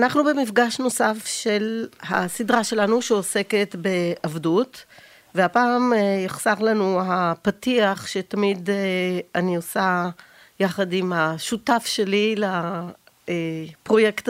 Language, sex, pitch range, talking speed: Hebrew, female, 175-225 Hz, 85 wpm